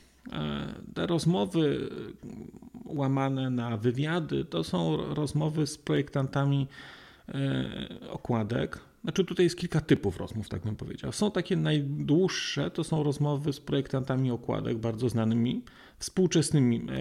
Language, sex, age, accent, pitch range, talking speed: Polish, male, 40-59, native, 125-155 Hz, 115 wpm